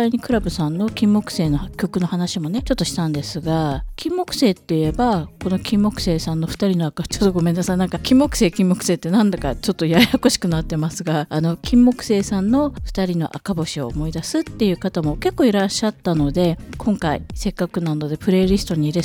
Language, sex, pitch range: Japanese, female, 160-230 Hz